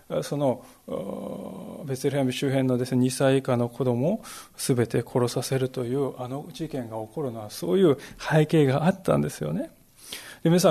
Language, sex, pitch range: Japanese, male, 125-190 Hz